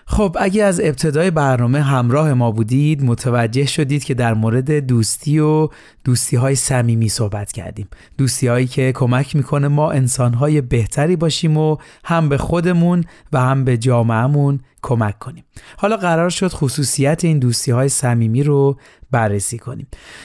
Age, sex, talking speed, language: 30-49, male, 140 wpm, Persian